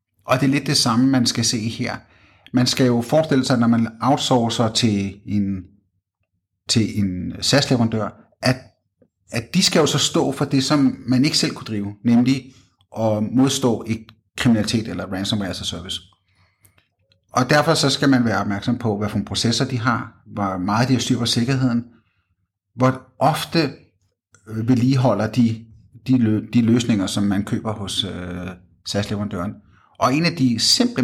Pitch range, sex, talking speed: 105-130 Hz, male, 165 wpm